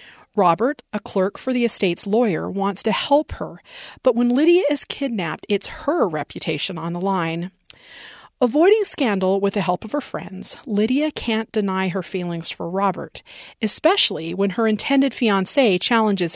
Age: 40-59